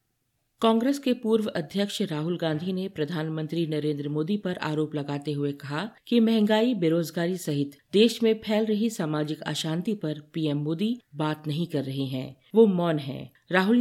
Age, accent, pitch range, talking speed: 50-69, native, 150-205 Hz, 160 wpm